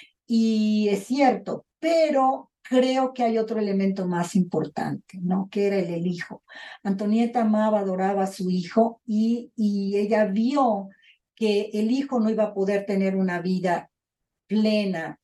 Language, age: Spanish, 40-59